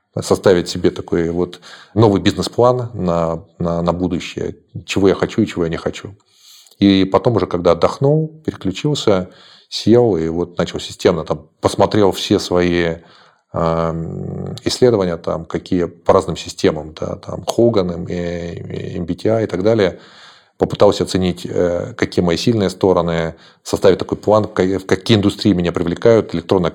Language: Russian